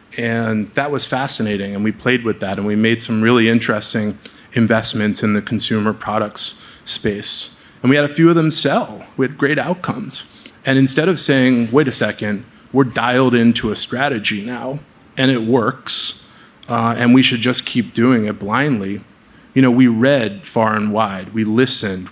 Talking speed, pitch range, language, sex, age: 180 wpm, 105-120 Hz, English, male, 30-49